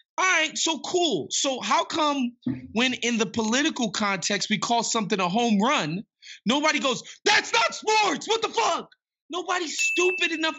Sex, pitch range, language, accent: male, 210-290 Hz, English, American